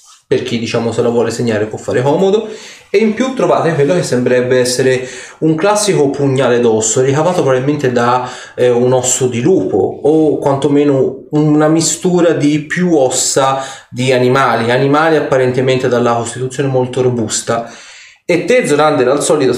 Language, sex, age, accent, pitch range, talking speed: Italian, male, 30-49, native, 125-150 Hz, 155 wpm